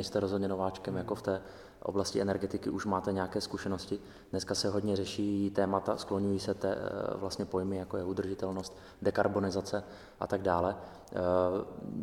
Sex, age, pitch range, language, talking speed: male, 20-39, 90-100 Hz, Czech, 145 wpm